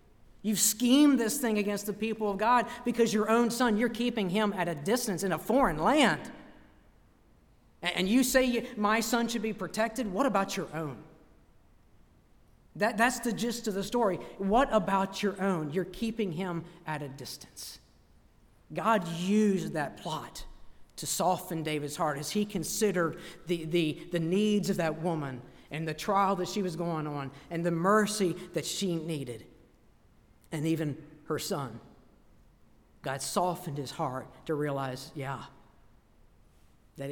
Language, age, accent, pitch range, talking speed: English, 50-69, American, 135-205 Hz, 155 wpm